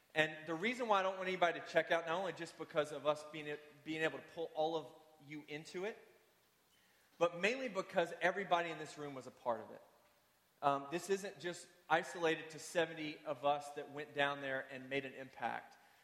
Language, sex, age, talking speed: English, male, 30-49, 210 wpm